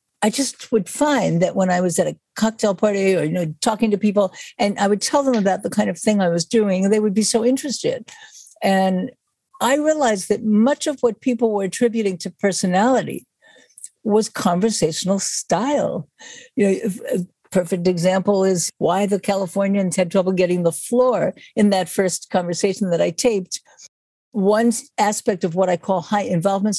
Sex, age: female, 60-79